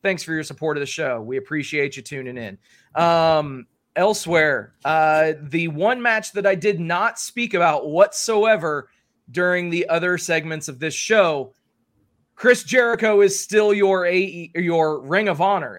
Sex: male